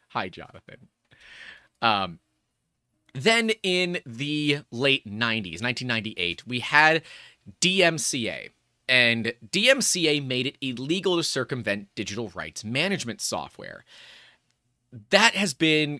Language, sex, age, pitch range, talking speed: English, male, 30-49, 120-160 Hz, 100 wpm